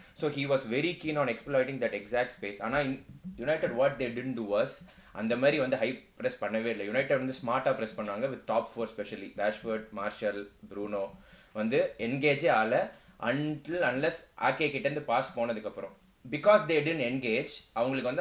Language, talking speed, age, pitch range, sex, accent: Tamil, 180 wpm, 20-39, 110-140 Hz, male, native